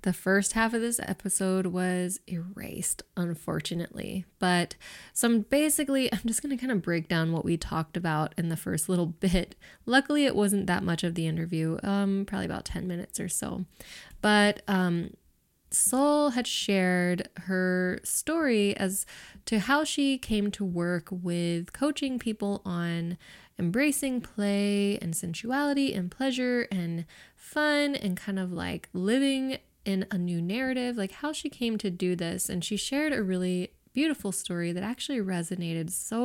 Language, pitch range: English, 175-225 Hz